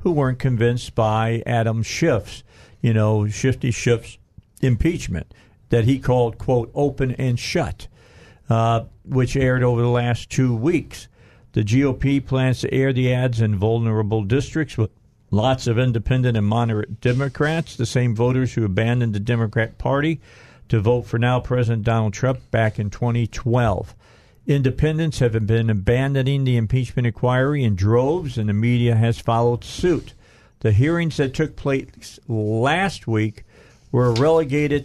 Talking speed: 145 wpm